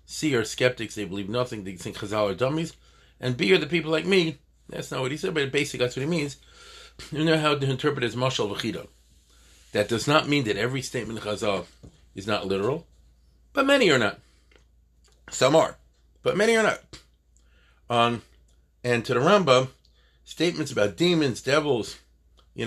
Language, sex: English, male